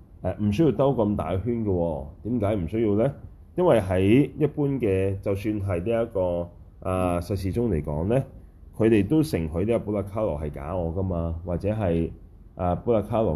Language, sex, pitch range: Chinese, male, 80-110 Hz